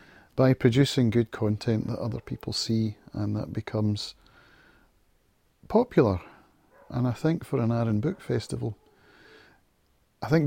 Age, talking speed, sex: 40-59, 125 wpm, male